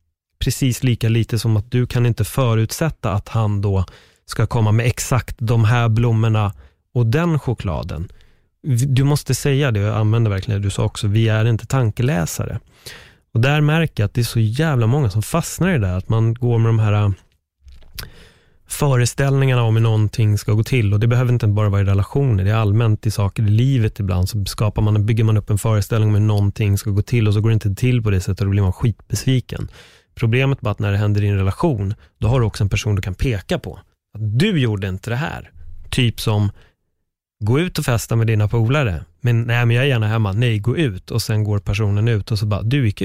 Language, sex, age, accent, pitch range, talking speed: Swedish, male, 30-49, native, 100-125 Hz, 225 wpm